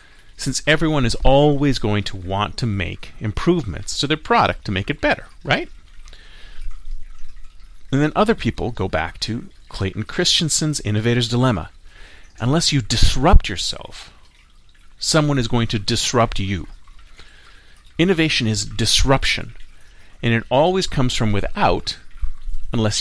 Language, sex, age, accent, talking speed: English, male, 40-59, American, 130 wpm